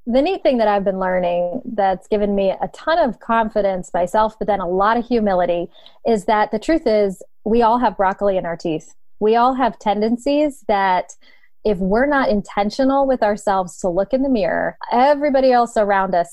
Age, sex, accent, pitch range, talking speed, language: 20-39, female, American, 200-255 Hz, 195 wpm, English